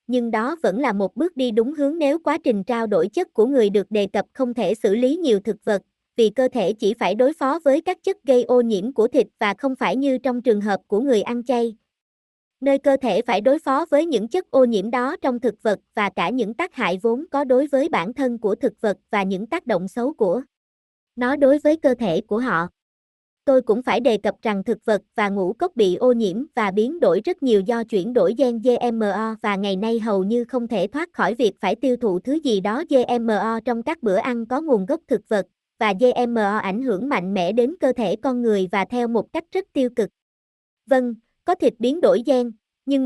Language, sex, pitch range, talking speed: Vietnamese, male, 210-270 Hz, 235 wpm